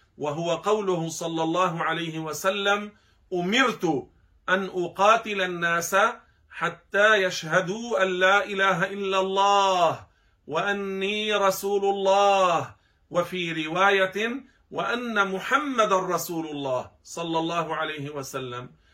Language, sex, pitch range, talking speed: Arabic, male, 160-195 Hz, 95 wpm